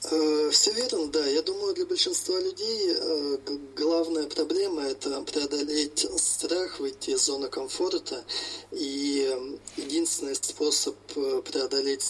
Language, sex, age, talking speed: Russian, male, 20-39, 105 wpm